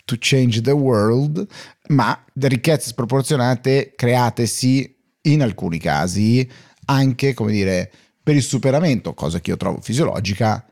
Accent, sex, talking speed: native, male, 125 wpm